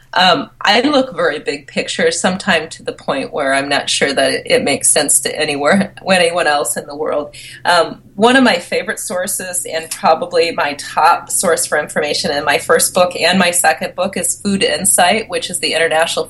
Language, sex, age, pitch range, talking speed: English, female, 30-49, 155-210 Hz, 195 wpm